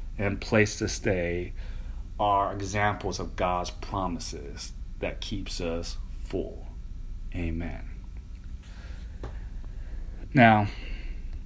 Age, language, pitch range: 30-49, English, 90-120 Hz